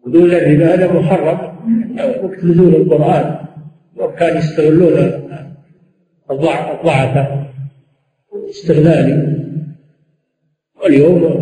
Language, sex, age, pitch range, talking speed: Arabic, male, 50-69, 145-175 Hz, 70 wpm